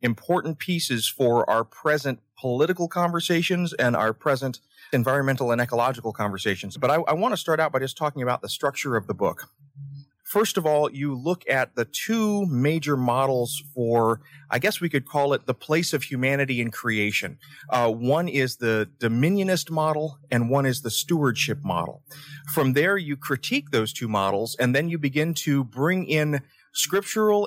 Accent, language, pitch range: American, English, 120-155 Hz